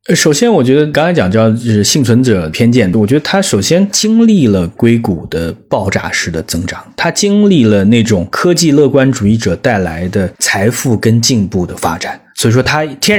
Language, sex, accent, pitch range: Chinese, male, native, 105-140 Hz